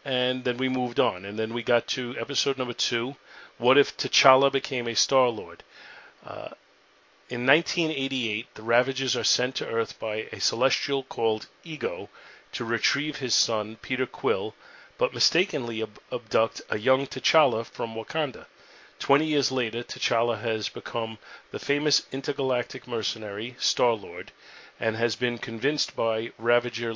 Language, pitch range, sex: English, 115-135 Hz, male